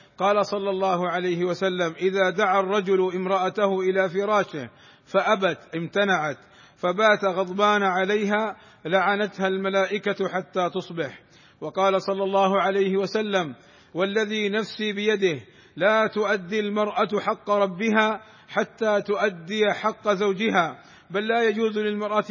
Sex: male